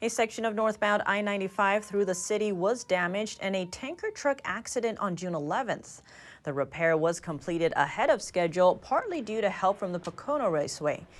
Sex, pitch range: female, 165-220 Hz